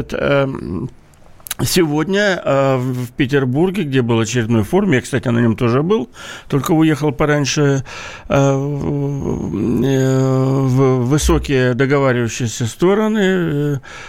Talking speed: 85 wpm